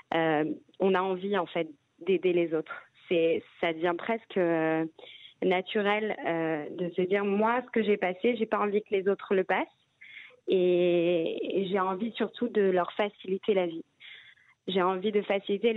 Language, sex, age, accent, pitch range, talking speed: French, female, 20-39, French, 180-215 Hz, 175 wpm